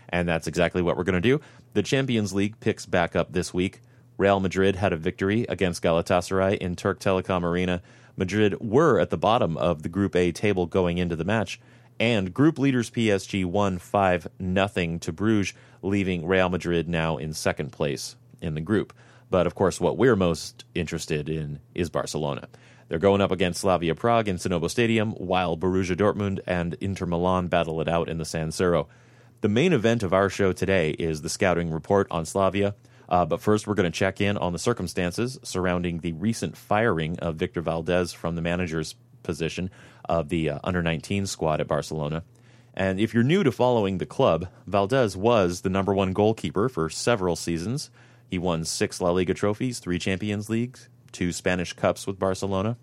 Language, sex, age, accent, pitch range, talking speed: English, male, 30-49, American, 85-115 Hz, 185 wpm